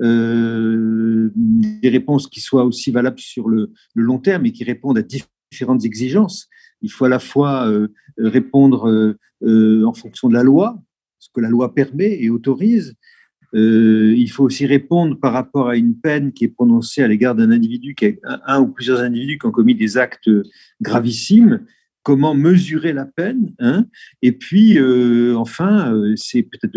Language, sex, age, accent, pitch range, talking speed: French, male, 50-69, French, 115-180 Hz, 180 wpm